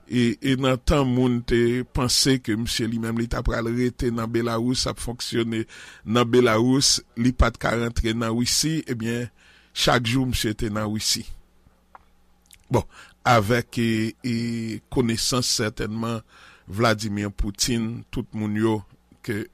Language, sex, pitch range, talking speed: English, male, 110-125 Hz, 105 wpm